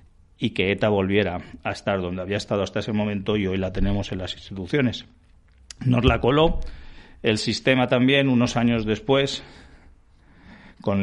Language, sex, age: Spanish, male, 50-69